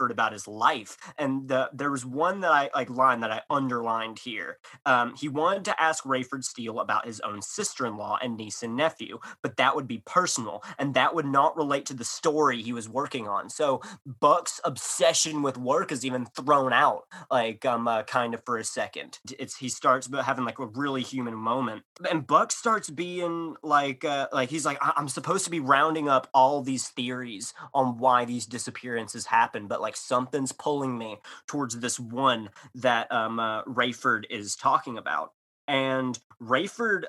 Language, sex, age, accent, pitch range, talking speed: English, male, 20-39, American, 120-145 Hz, 185 wpm